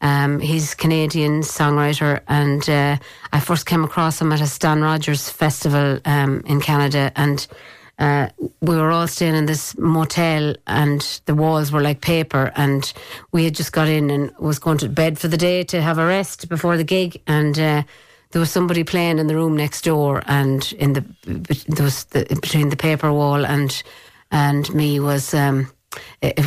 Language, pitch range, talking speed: English, 140-155 Hz, 180 wpm